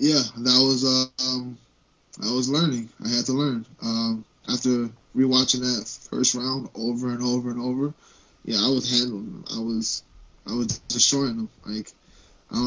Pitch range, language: 115-130 Hz, English